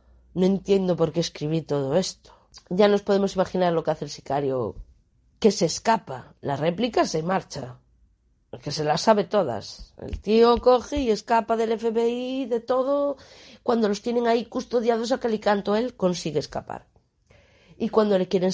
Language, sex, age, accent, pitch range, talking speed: Spanish, female, 30-49, Spanish, 160-205 Hz, 165 wpm